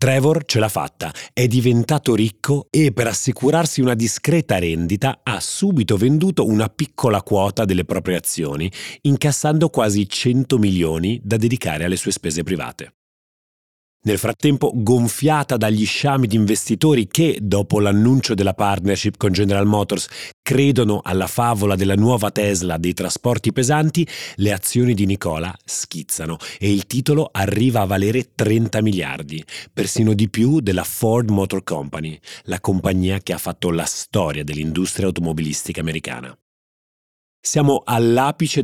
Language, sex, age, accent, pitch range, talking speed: Italian, male, 30-49, native, 95-130 Hz, 135 wpm